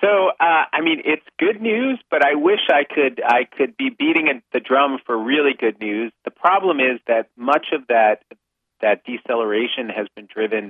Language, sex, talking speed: English, male, 190 wpm